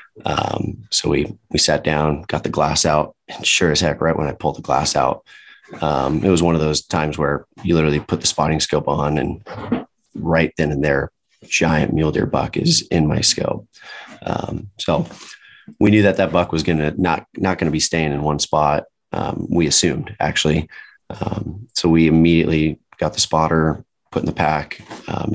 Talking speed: 200 wpm